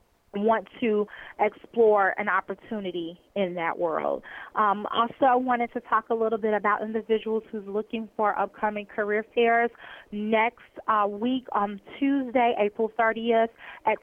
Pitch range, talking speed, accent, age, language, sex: 195-230 Hz, 145 wpm, American, 20-39, English, female